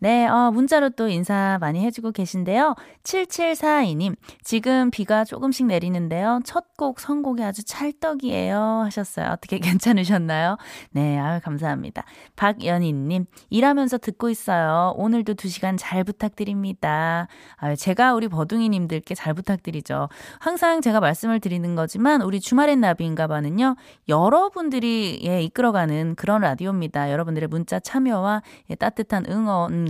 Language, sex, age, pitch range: Korean, female, 20-39, 165-230 Hz